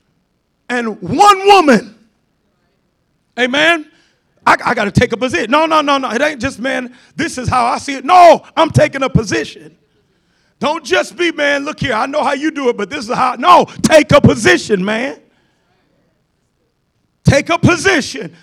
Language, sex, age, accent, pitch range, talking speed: English, male, 40-59, American, 235-310 Hz, 175 wpm